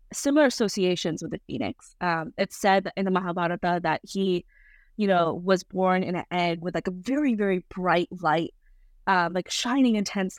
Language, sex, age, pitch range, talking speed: English, female, 20-39, 175-210 Hz, 190 wpm